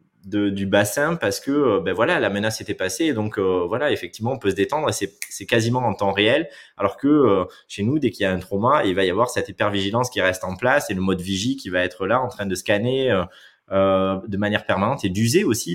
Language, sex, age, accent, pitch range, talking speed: French, male, 20-39, French, 95-120 Hz, 255 wpm